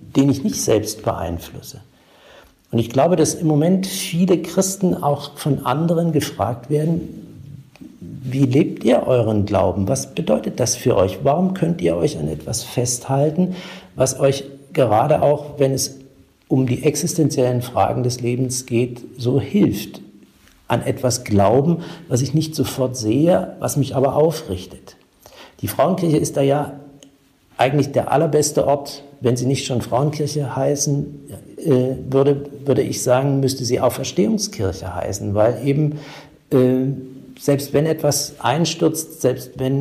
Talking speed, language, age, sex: 145 wpm, German, 50-69, male